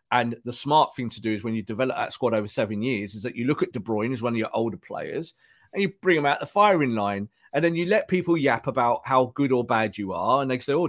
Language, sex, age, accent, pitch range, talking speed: English, male, 40-59, British, 125-195 Hz, 290 wpm